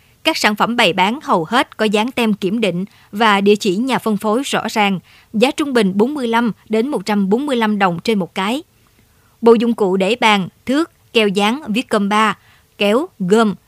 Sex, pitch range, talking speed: male, 195-235 Hz, 190 wpm